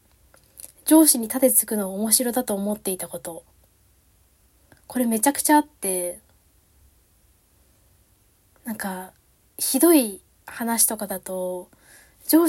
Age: 20-39